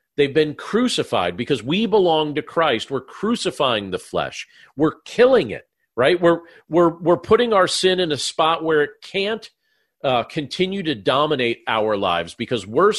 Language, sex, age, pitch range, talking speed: English, male, 40-59, 125-160 Hz, 165 wpm